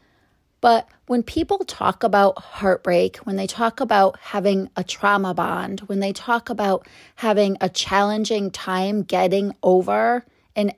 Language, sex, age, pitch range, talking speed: English, female, 30-49, 190-235 Hz, 140 wpm